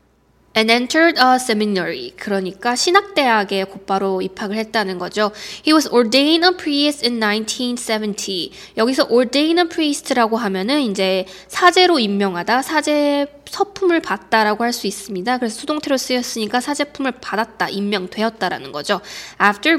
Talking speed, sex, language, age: 115 wpm, female, English, 20-39